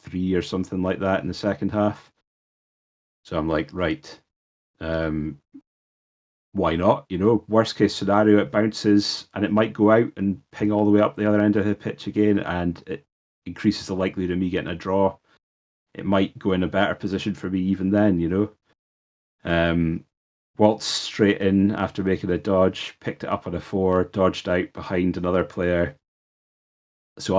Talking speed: 185 wpm